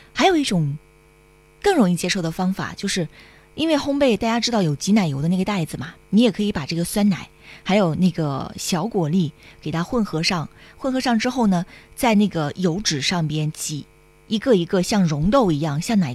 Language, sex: Chinese, female